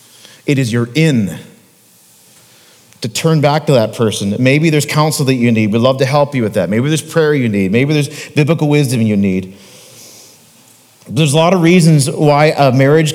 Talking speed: 190 wpm